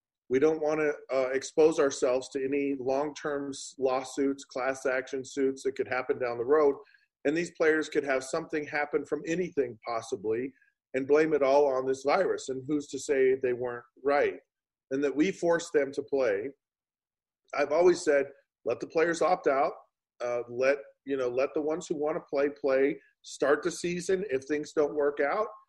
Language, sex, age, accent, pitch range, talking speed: English, male, 40-59, American, 140-180 Hz, 185 wpm